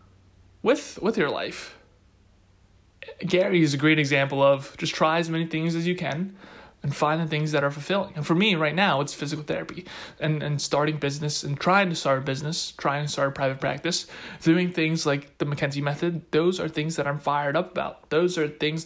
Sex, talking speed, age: male, 210 wpm, 20-39